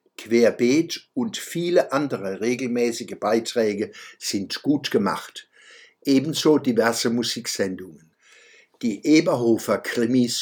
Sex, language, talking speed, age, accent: male, German, 85 wpm, 60-79, German